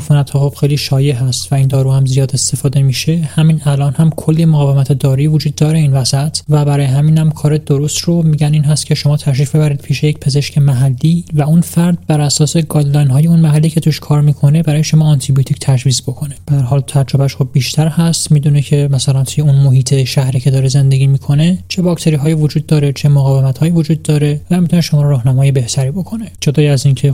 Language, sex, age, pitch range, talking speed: Persian, male, 30-49, 140-155 Hz, 210 wpm